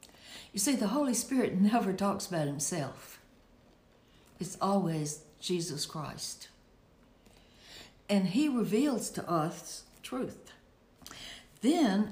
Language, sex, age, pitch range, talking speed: English, female, 60-79, 170-235 Hz, 105 wpm